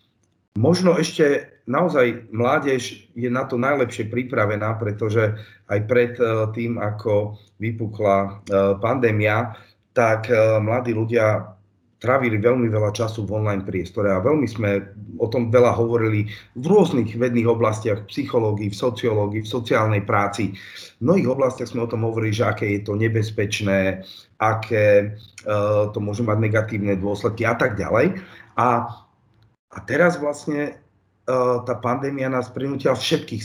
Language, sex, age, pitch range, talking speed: Slovak, male, 30-49, 105-120 Hz, 135 wpm